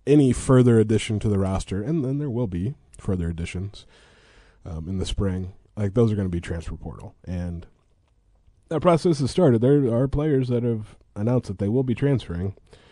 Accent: American